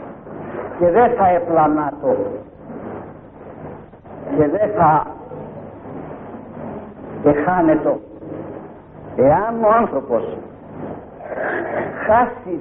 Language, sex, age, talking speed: Greek, male, 50-69, 65 wpm